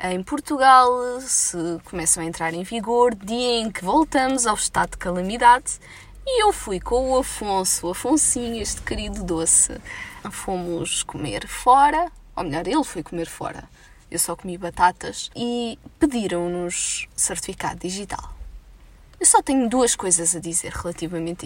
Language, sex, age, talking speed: Portuguese, female, 20-39, 145 wpm